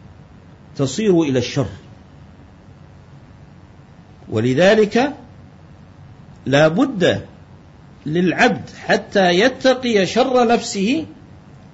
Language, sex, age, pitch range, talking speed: Arabic, male, 50-69, 175-245 Hz, 50 wpm